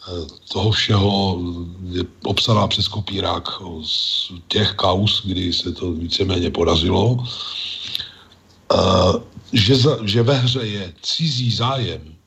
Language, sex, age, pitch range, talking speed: Slovak, male, 40-59, 95-120 Hz, 115 wpm